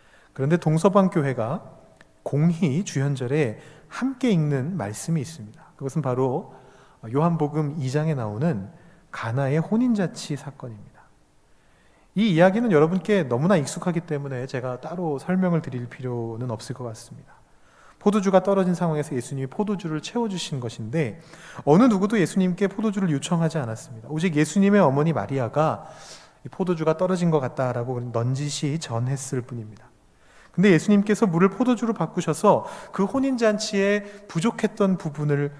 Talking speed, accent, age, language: 110 wpm, Korean, 30-49, English